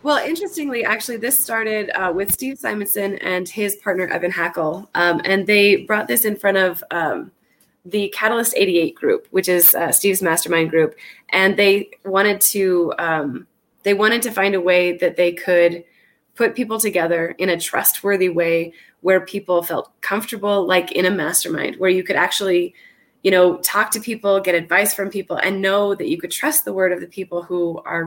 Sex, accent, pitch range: female, American, 175-205 Hz